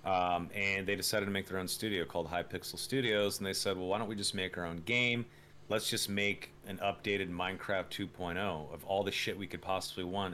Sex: male